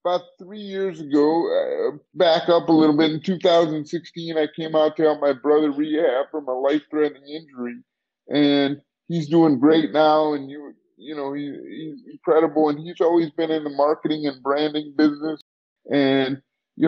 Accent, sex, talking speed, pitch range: American, male, 165 wpm, 150-170 Hz